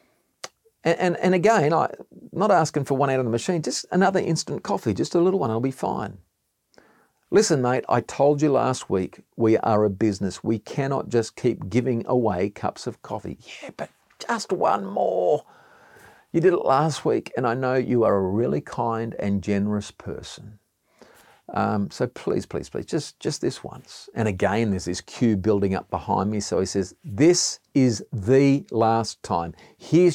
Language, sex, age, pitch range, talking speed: English, male, 50-69, 100-135 Hz, 185 wpm